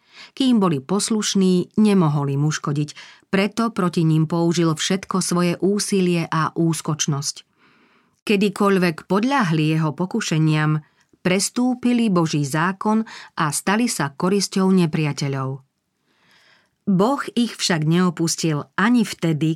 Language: Slovak